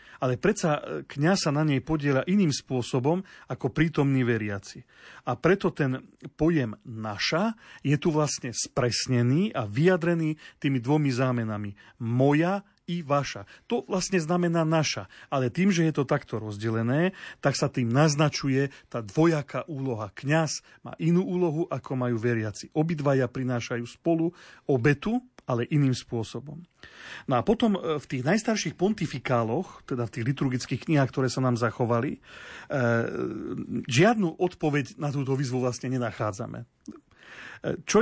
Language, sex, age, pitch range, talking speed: Slovak, male, 40-59, 125-160 Hz, 135 wpm